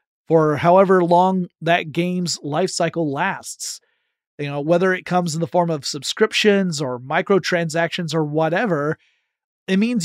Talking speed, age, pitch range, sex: 145 wpm, 30-49, 150-185 Hz, male